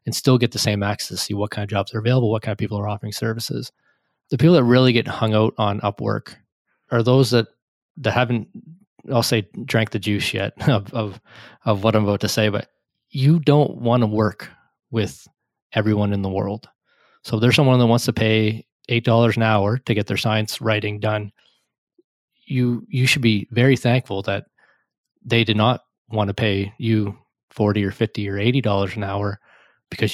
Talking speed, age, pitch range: 195 wpm, 20-39, 105-120 Hz